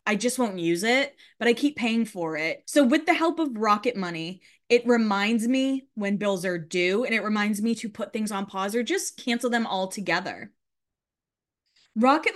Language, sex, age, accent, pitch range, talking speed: English, female, 20-39, American, 200-275 Hz, 200 wpm